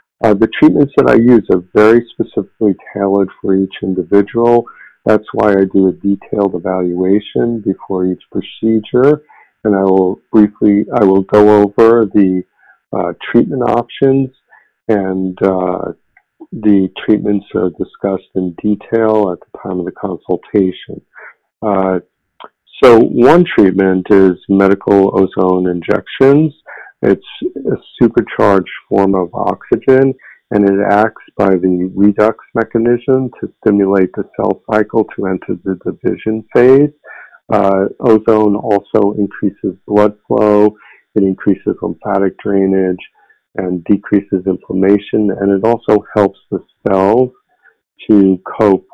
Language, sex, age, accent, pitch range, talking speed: English, male, 50-69, American, 95-110 Hz, 125 wpm